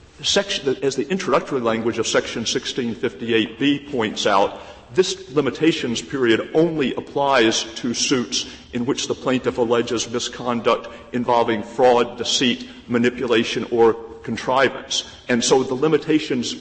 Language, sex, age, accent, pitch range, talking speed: English, male, 50-69, American, 115-140 Hz, 120 wpm